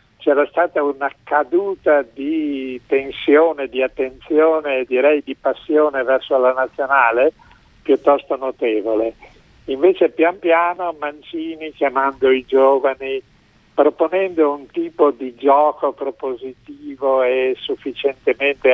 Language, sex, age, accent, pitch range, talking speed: Italian, male, 60-79, native, 130-155 Hz, 100 wpm